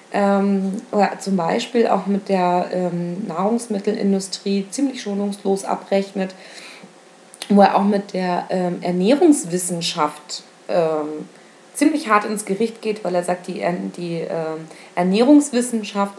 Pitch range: 180-205 Hz